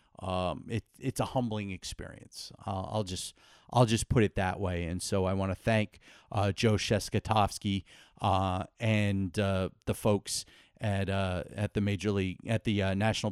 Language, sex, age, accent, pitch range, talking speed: English, male, 40-59, American, 100-125 Hz, 170 wpm